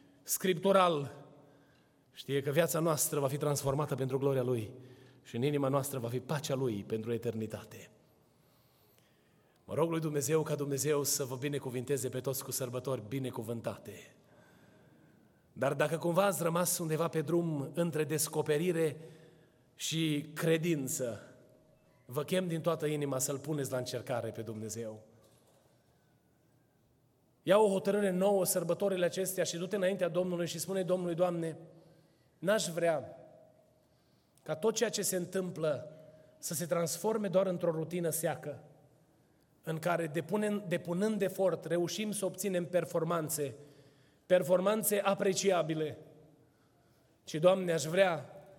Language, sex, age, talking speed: Romanian, male, 30-49, 125 wpm